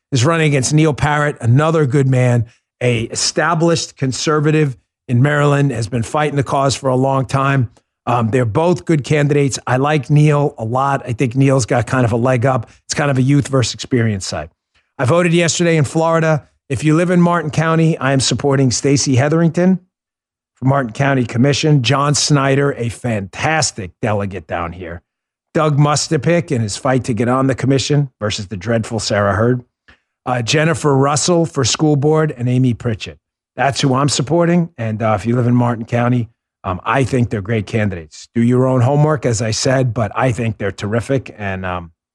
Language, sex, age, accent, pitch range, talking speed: English, male, 40-59, American, 110-145 Hz, 190 wpm